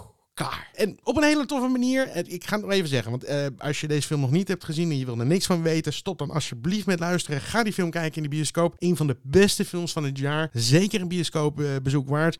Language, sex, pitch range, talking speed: Dutch, male, 125-165 Hz, 250 wpm